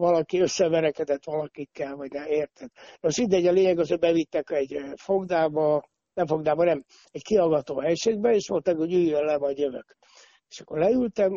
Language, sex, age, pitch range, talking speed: Hungarian, male, 60-79, 150-190 Hz, 165 wpm